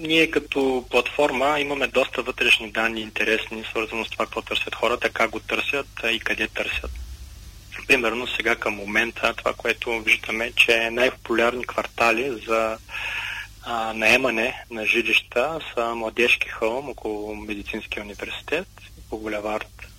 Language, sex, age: Bulgarian, male, 30-49